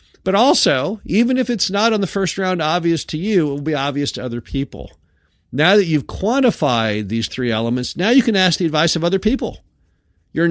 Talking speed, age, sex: 210 wpm, 50-69, male